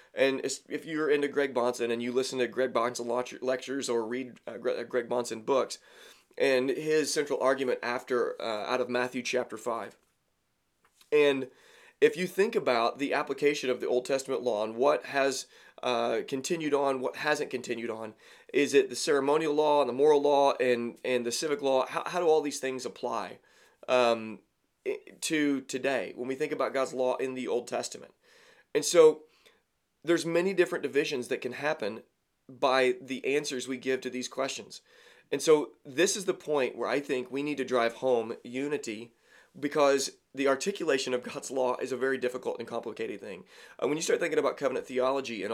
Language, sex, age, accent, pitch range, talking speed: English, male, 30-49, American, 125-155 Hz, 180 wpm